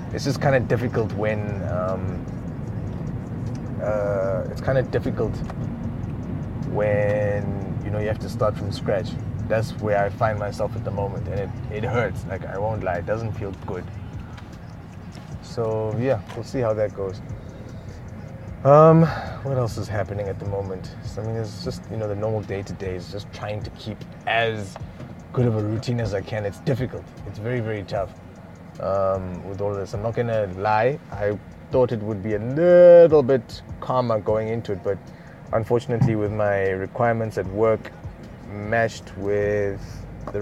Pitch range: 100-120 Hz